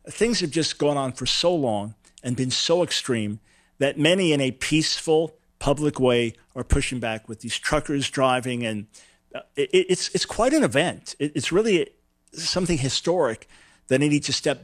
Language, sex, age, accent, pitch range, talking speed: English, male, 50-69, American, 110-165 Hz, 170 wpm